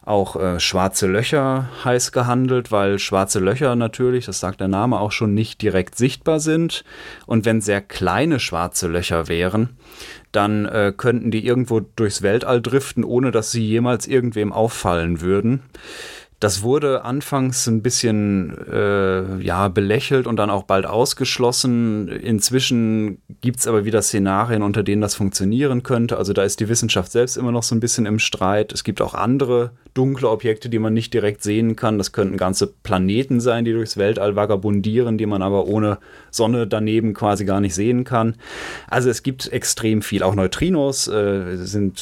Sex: male